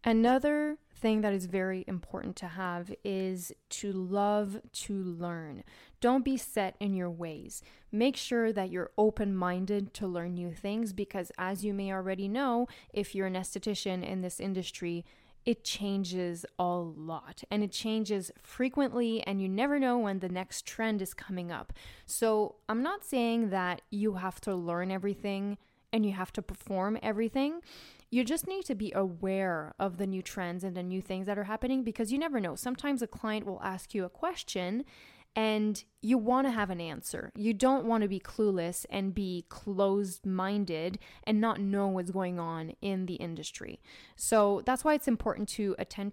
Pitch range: 185-225 Hz